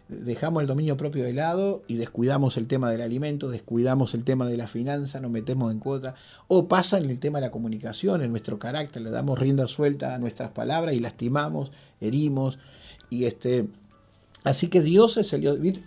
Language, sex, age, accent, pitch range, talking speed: Spanish, male, 40-59, Argentinian, 120-150 Hz, 195 wpm